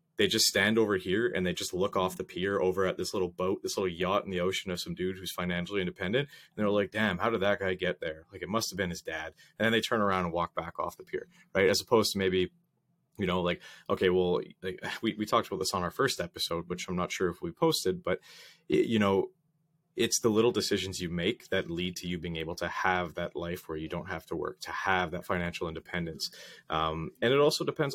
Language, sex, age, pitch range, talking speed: English, male, 30-49, 90-110 Hz, 250 wpm